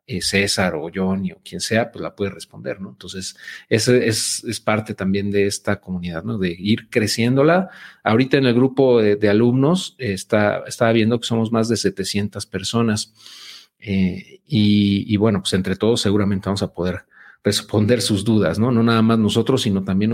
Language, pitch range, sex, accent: Spanish, 100-120 Hz, male, Mexican